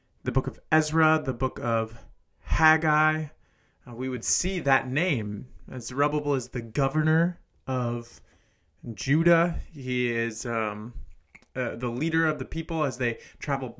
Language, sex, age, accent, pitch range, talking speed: English, male, 30-49, American, 120-145 Hz, 145 wpm